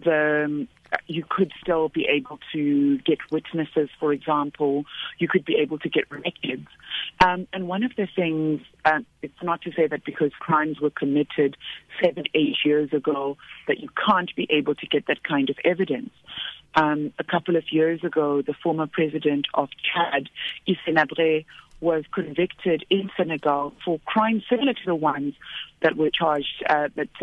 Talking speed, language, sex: 165 wpm, English, female